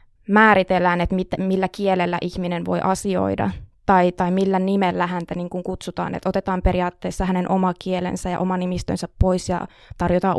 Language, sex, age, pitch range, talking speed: Finnish, female, 20-39, 180-200 Hz, 155 wpm